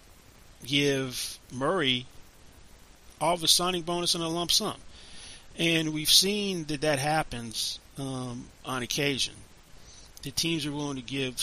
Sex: male